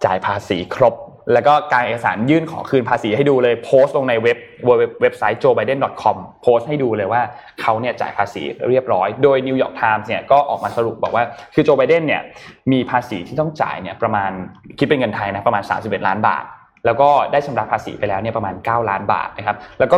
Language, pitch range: English, 110-140 Hz